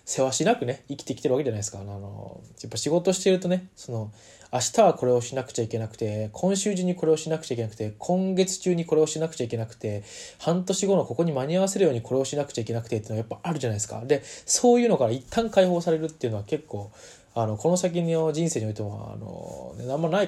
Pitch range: 110-155 Hz